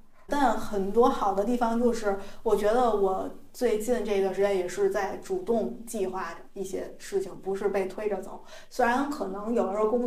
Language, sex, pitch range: Chinese, female, 195-250 Hz